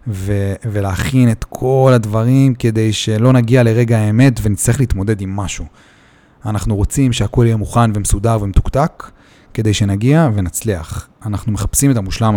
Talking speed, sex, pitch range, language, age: 135 wpm, male, 100-125 Hz, Hebrew, 30-49